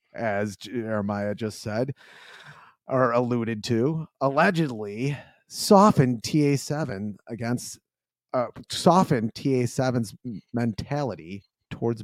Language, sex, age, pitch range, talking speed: English, male, 30-49, 115-170 Hz, 80 wpm